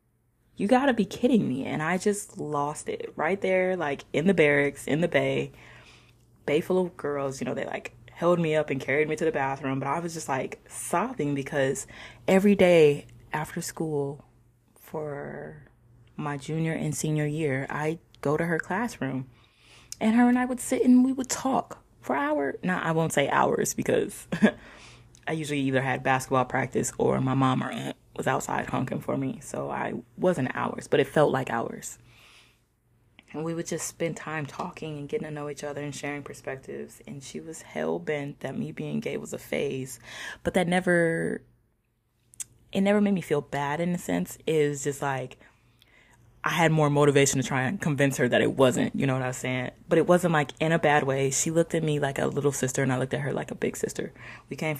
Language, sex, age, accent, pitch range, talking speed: English, female, 20-39, American, 125-165 Hz, 210 wpm